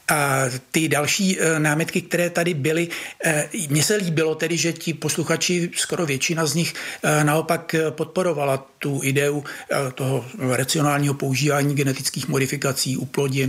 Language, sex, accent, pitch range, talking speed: Czech, male, native, 145-180 Hz, 130 wpm